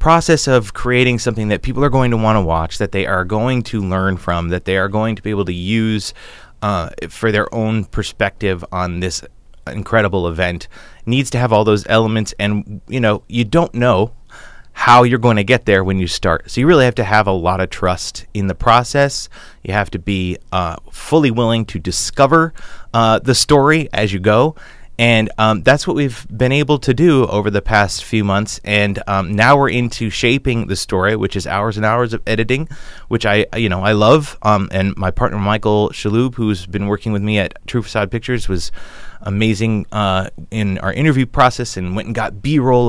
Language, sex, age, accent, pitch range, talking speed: English, male, 30-49, American, 100-125 Hz, 205 wpm